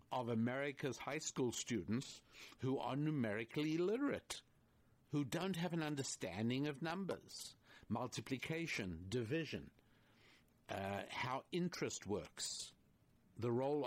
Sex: male